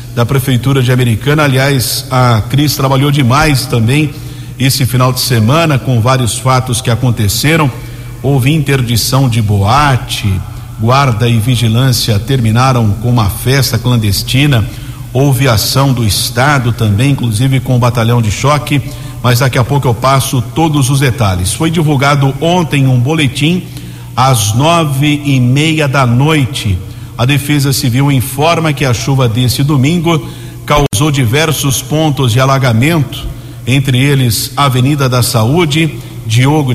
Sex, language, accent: male, Portuguese, Brazilian